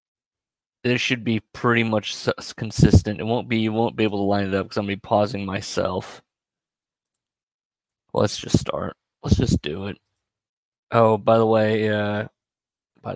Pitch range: 105-115 Hz